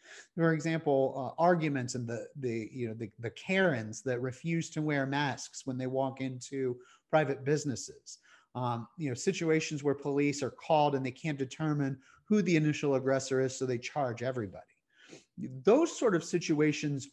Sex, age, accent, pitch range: male, 30-49, American, 130-170 Hz